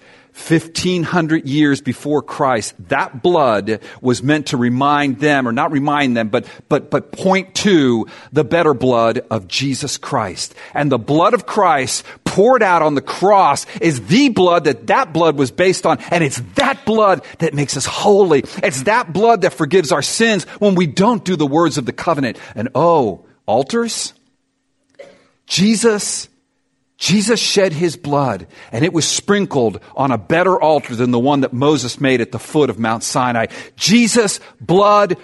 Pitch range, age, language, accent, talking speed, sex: 140-200 Hz, 40-59, English, American, 170 wpm, male